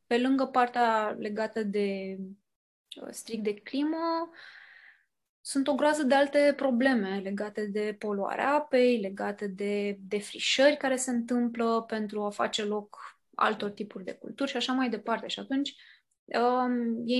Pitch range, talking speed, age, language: 210-260 Hz, 140 wpm, 20-39, Romanian